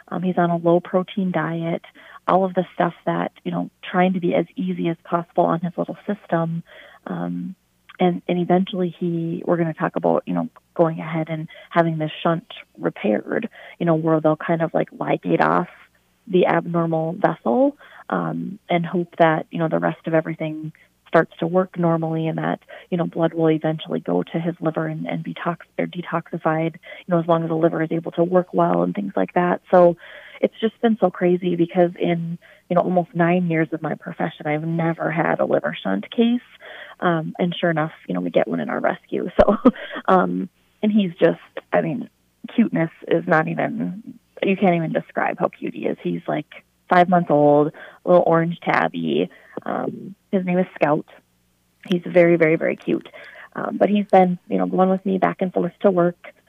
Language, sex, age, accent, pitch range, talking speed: English, female, 30-49, American, 160-185 Hz, 200 wpm